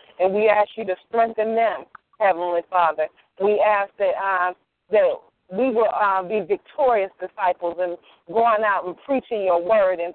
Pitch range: 180-230 Hz